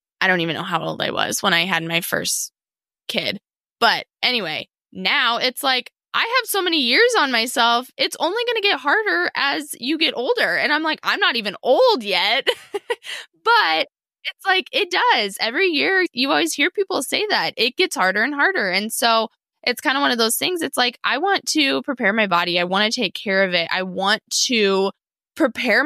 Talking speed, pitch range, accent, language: 210 wpm, 195-305 Hz, American, English